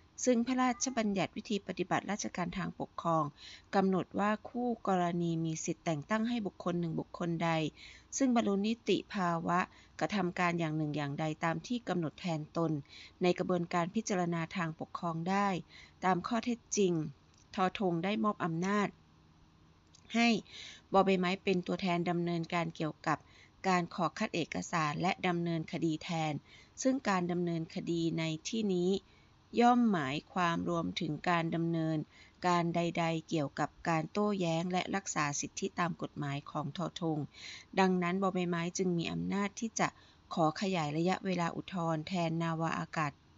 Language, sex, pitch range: Thai, female, 160-190 Hz